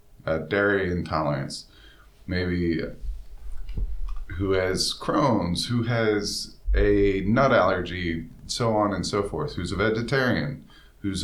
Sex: male